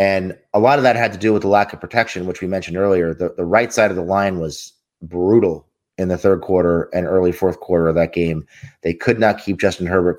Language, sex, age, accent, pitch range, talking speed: English, male, 30-49, American, 90-105 Hz, 255 wpm